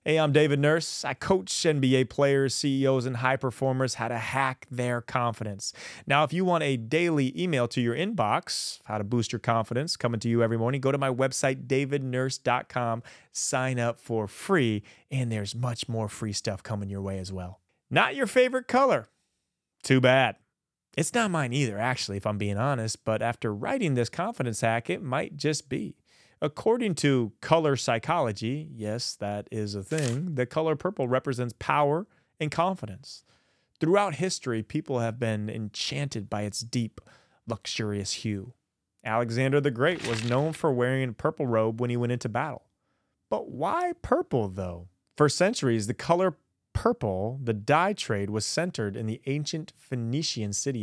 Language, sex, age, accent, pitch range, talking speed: English, male, 30-49, American, 110-145 Hz, 170 wpm